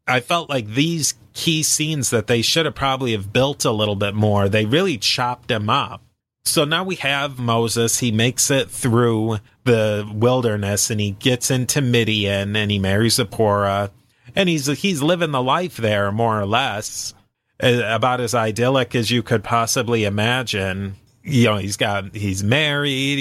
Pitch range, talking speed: 110-130 Hz, 170 wpm